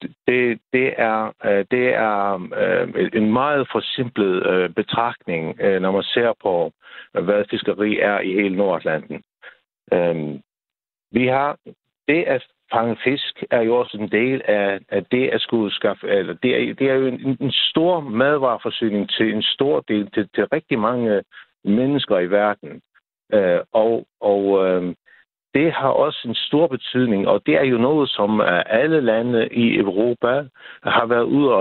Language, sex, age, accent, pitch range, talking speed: Danish, male, 60-79, native, 105-130 Hz, 160 wpm